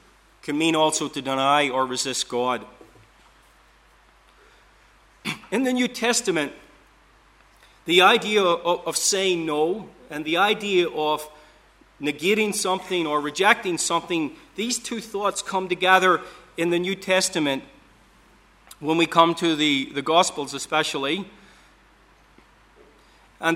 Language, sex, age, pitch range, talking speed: English, male, 40-59, 150-185 Hz, 110 wpm